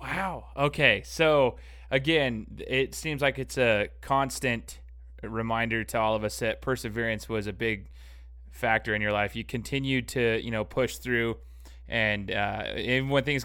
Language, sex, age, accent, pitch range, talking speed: English, male, 20-39, American, 110-130 Hz, 160 wpm